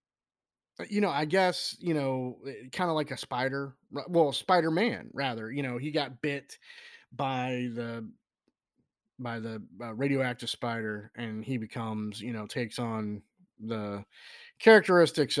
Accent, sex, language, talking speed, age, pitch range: American, male, English, 130 wpm, 20-39, 110-140 Hz